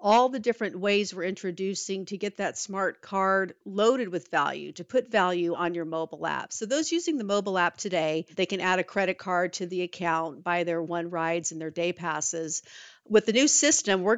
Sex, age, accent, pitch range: female, 50-69, American, 180-220 Hz